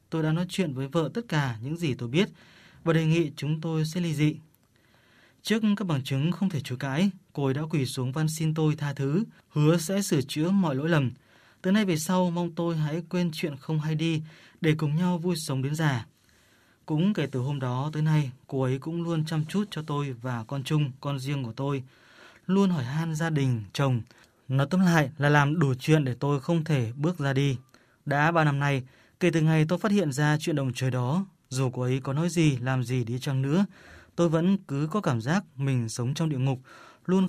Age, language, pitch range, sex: 20-39, Vietnamese, 135-170 Hz, male